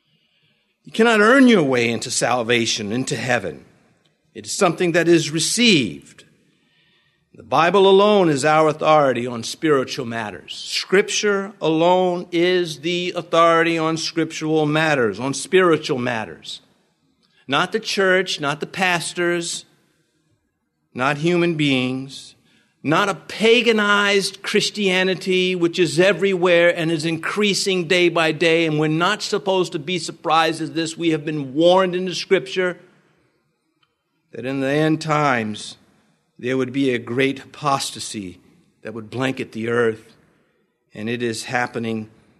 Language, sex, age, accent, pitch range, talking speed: English, male, 50-69, American, 130-180 Hz, 130 wpm